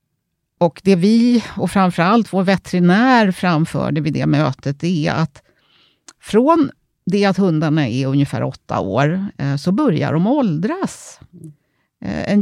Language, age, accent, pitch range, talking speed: Swedish, 50-69, native, 145-200 Hz, 125 wpm